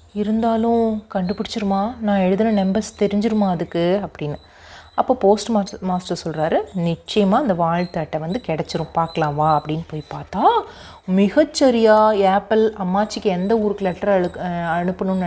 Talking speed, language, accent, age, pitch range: 120 wpm, Tamil, native, 30-49, 185-260 Hz